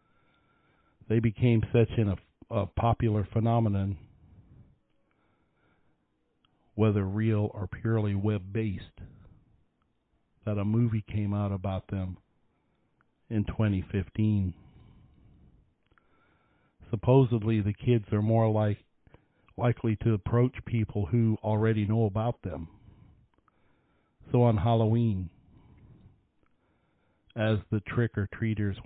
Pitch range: 100-110 Hz